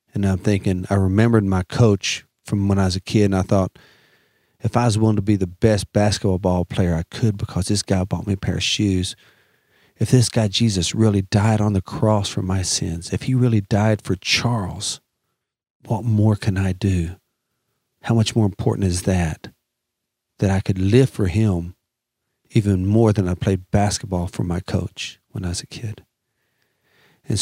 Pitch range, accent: 95-110 Hz, American